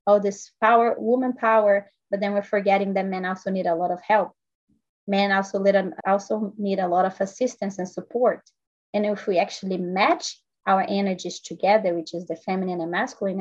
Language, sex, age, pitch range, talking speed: English, female, 20-39, 185-215 Hz, 180 wpm